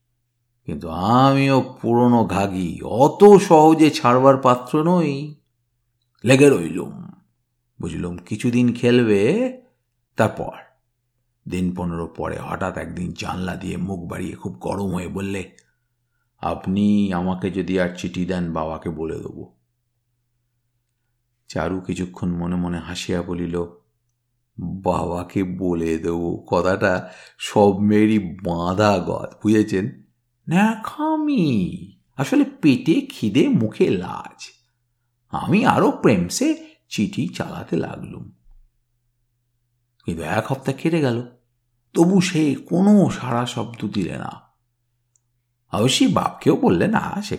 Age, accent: 50-69, native